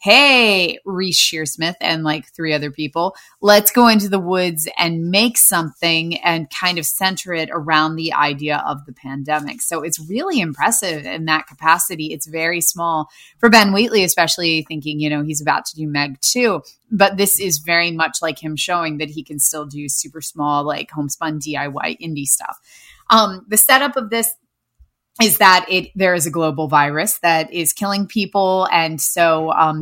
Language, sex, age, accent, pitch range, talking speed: English, female, 20-39, American, 155-195 Hz, 180 wpm